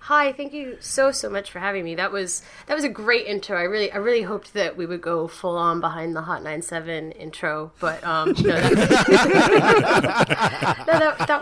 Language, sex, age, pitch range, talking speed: English, female, 20-39, 170-265 Hz, 210 wpm